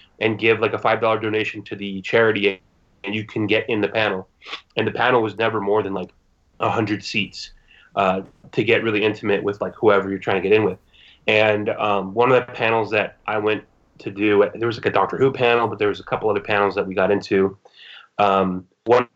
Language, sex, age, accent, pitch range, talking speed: English, male, 30-49, American, 100-115 Hz, 220 wpm